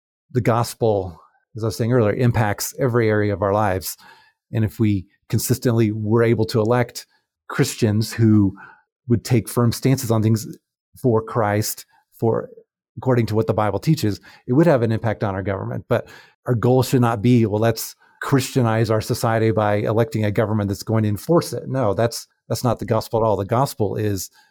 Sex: male